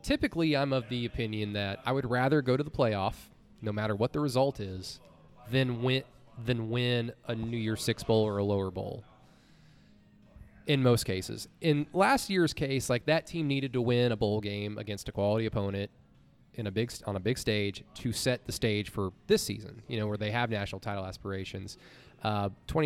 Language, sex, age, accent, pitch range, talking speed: English, male, 20-39, American, 105-135 Hz, 200 wpm